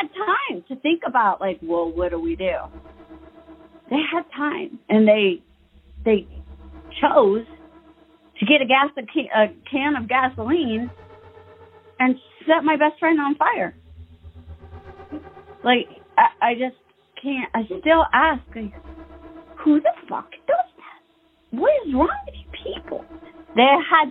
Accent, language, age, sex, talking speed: American, English, 40-59, female, 135 wpm